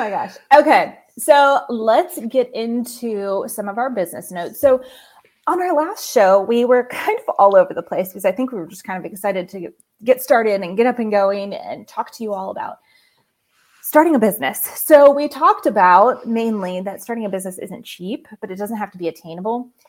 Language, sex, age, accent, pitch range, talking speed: English, female, 20-39, American, 195-275 Hz, 210 wpm